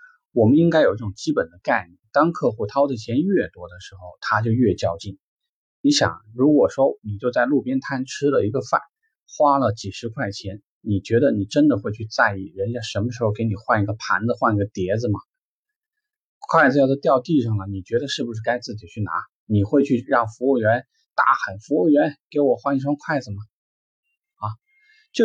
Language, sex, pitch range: Chinese, male, 100-145 Hz